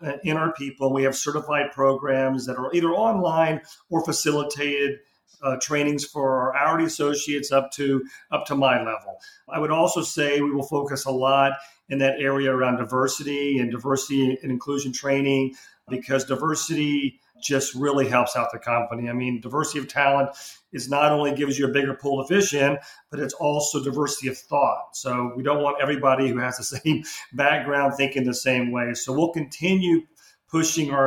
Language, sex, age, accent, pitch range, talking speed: English, male, 40-59, American, 125-145 Hz, 175 wpm